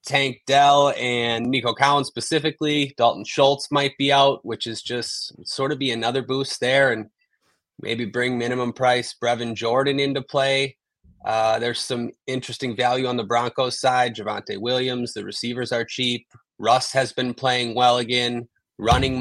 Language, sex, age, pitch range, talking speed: English, male, 20-39, 115-140 Hz, 160 wpm